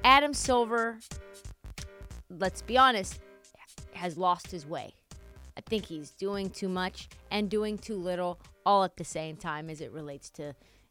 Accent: American